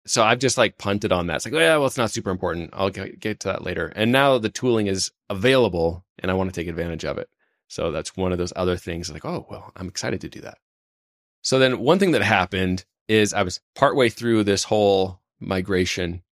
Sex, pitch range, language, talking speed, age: male, 95-120 Hz, English, 230 wpm, 20-39